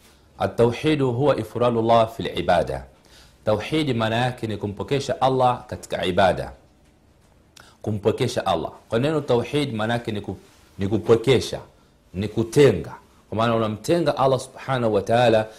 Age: 40-59